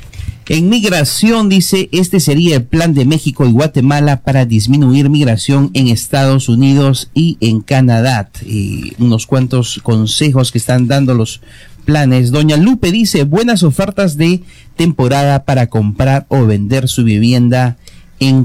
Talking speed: 140 wpm